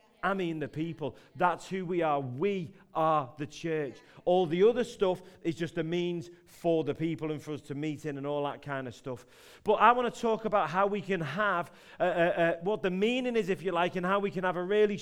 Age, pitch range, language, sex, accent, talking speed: 40-59, 170-215 Hz, English, male, British, 250 wpm